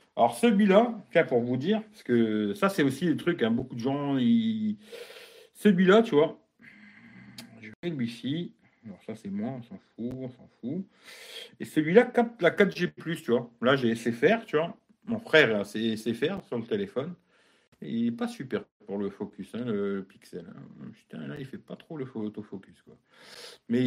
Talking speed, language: 190 wpm, French